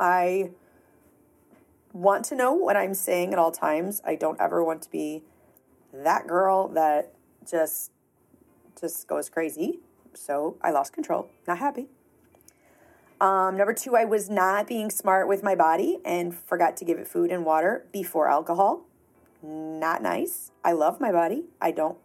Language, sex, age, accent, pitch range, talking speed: English, female, 30-49, American, 165-210 Hz, 160 wpm